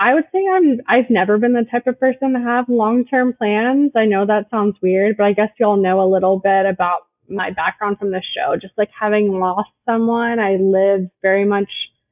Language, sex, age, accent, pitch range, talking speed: English, female, 20-39, American, 190-225 Hz, 230 wpm